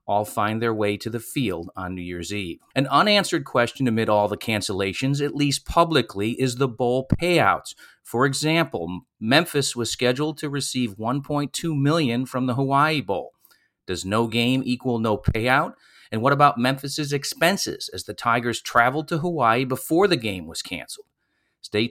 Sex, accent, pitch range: male, American, 115-145 Hz